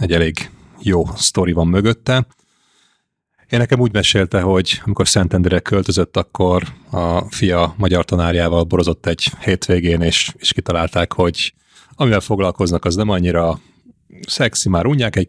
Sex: male